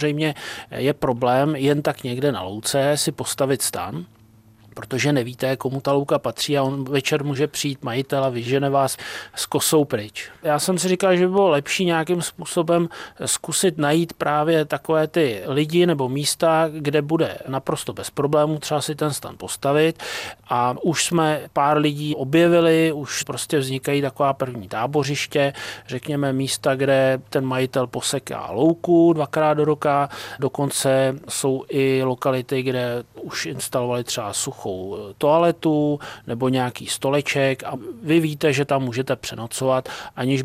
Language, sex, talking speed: Czech, male, 150 wpm